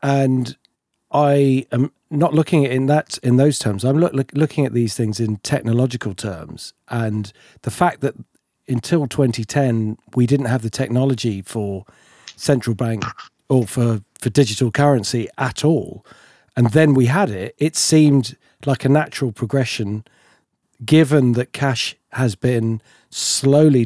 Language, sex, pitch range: English, male, 115-150 Hz